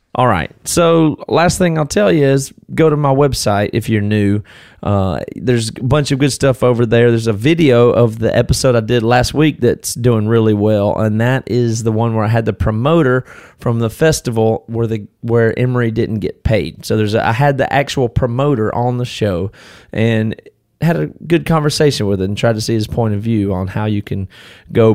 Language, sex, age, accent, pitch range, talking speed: English, male, 30-49, American, 105-135 Hz, 215 wpm